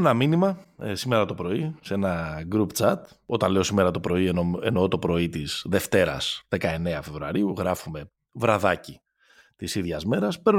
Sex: male